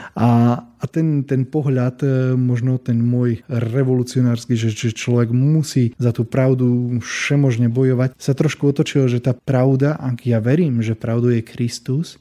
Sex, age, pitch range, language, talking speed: male, 20-39, 115-135 Hz, Slovak, 150 wpm